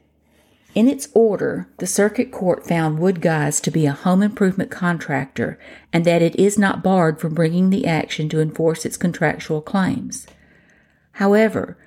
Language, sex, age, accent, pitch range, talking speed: English, female, 50-69, American, 155-200 Hz, 150 wpm